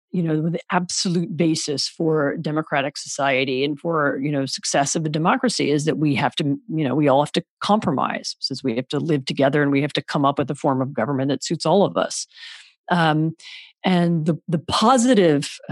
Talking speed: 210 wpm